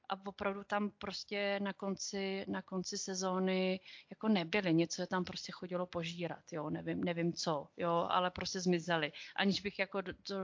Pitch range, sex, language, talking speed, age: 180-215 Hz, female, Czech, 170 wpm, 30-49